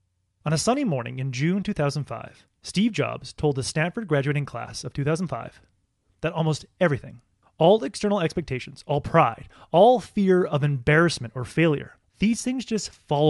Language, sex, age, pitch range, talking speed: English, male, 30-49, 120-165 Hz, 155 wpm